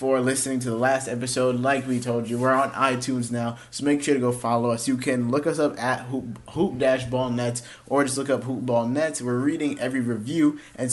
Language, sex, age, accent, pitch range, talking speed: English, male, 20-39, American, 120-140 Hz, 210 wpm